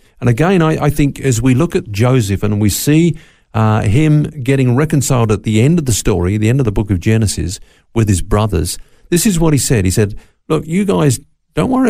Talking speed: 225 wpm